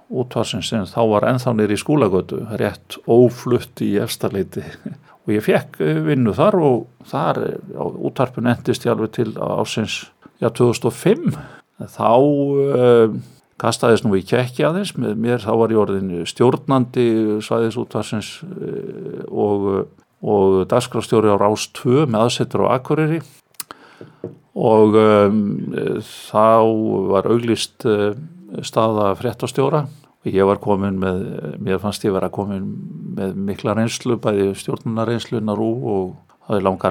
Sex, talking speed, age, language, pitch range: male, 135 wpm, 50-69, English, 105-130 Hz